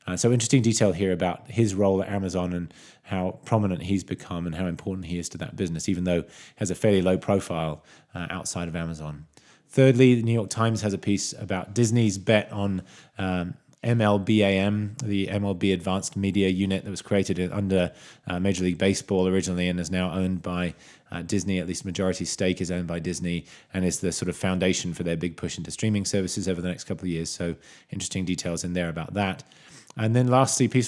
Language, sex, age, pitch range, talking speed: English, male, 20-39, 90-105 Hz, 210 wpm